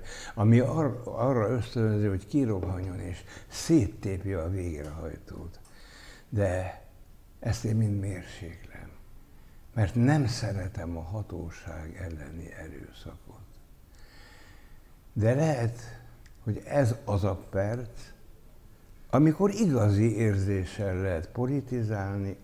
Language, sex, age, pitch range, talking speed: Hungarian, male, 60-79, 95-115 Hz, 90 wpm